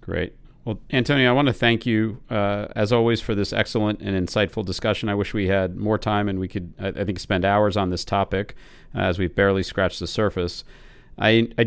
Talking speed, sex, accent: 210 wpm, male, American